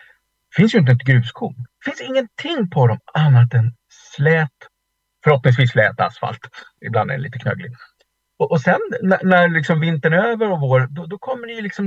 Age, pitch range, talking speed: 50-69, 120-165 Hz, 190 wpm